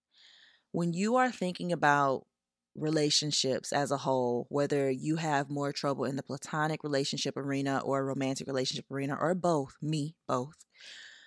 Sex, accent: female, American